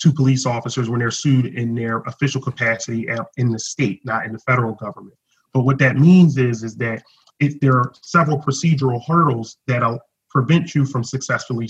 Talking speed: 185 wpm